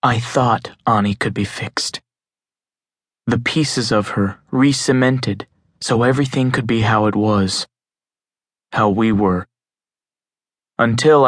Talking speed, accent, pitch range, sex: 115 wpm, American, 105-130 Hz, male